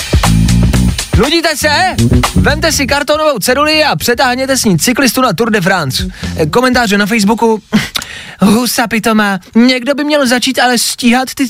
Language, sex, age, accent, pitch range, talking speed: Czech, male, 20-39, native, 135-220 Hz, 140 wpm